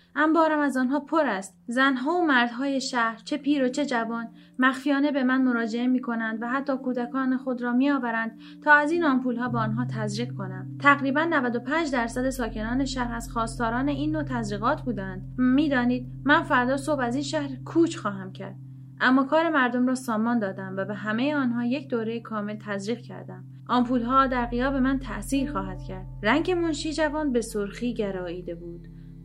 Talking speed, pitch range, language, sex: 170 wpm, 220-270 Hz, Persian, female